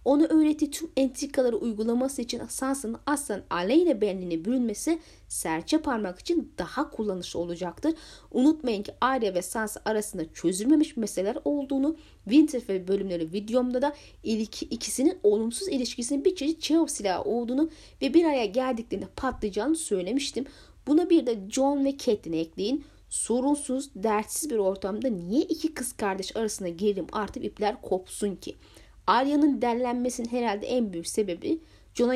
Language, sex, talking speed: Turkish, female, 135 wpm